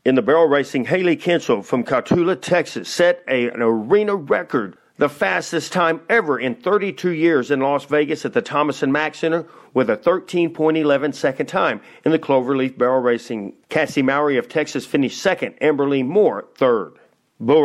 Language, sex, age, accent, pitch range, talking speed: English, male, 50-69, American, 125-155 Hz, 170 wpm